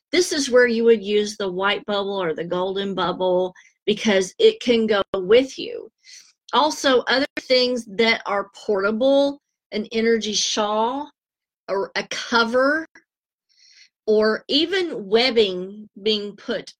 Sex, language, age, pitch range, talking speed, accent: female, English, 40-59, 195-250 Hz, 130 wpm, American